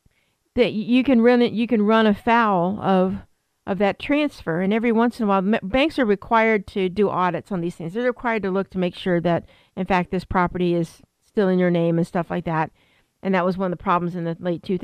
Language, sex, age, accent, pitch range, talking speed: English, female, 50-69, American, 180-225 Hz, 250 wpm